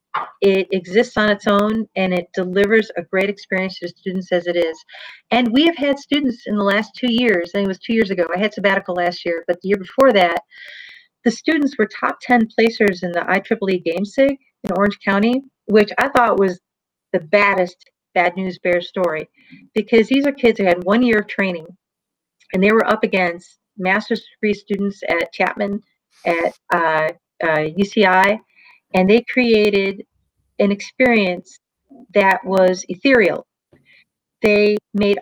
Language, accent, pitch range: English, American, 185-240 Hz